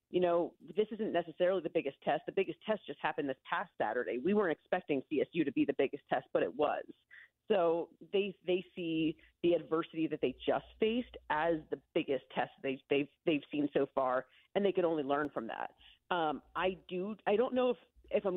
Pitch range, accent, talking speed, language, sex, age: 160-215 Hz, American, 210 wpm, English, female, 30-49